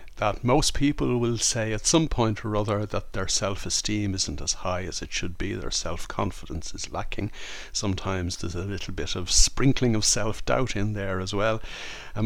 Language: English